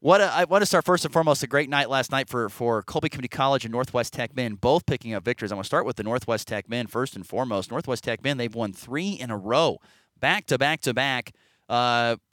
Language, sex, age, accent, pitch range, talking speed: English, male, 30-49, American, 115-150 Hz, 255 wpm